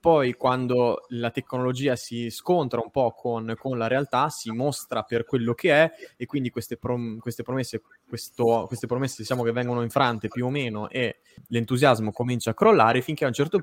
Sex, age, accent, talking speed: male, 20-39, native, 190 wpm